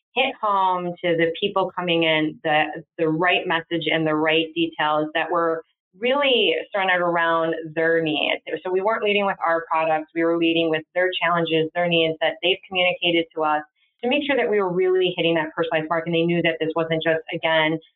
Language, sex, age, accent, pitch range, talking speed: English, female, 20-39, American, 160-180 Hz, 205 wpm